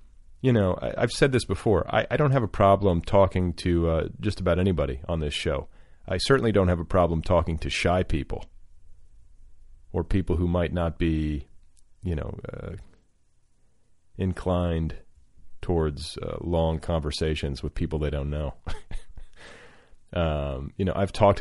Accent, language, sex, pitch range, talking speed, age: American, English, male, 80-105 Hz, 155 wpm, 30-49